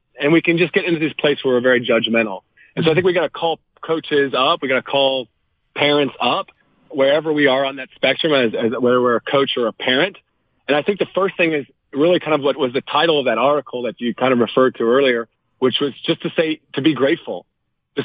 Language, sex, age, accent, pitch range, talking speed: English, male, 40-59, American, 130-160 Hz, 255 wpm